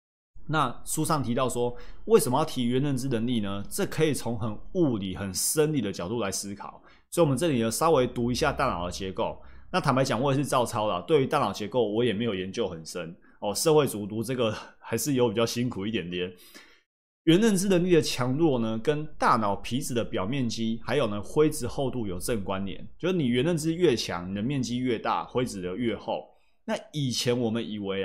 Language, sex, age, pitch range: Chinese, male, 20-39, 110-150 Hz